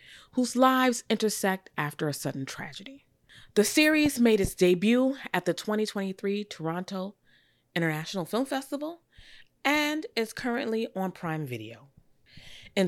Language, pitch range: English, 150-220 Hz